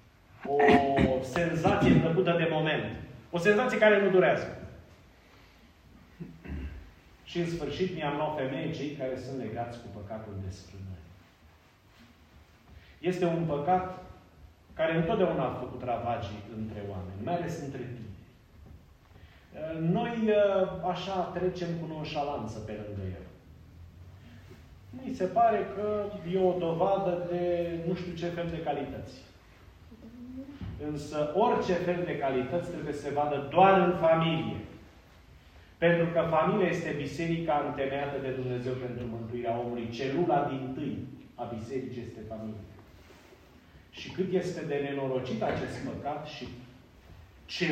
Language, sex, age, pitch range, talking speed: Romanian, male, 30-49, 100-170 Hz, 125 wpm